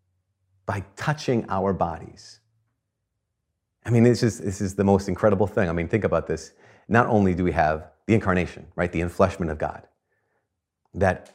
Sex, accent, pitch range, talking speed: male, American, 90-120 Hz, 170 wpm